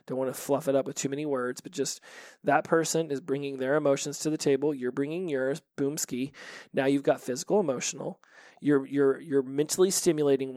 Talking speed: 200 wpm